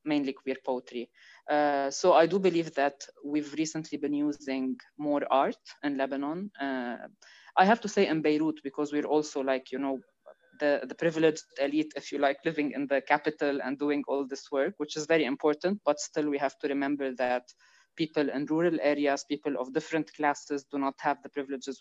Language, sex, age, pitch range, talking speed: English, female, 20-39, 135-155 Hz, 195 wpm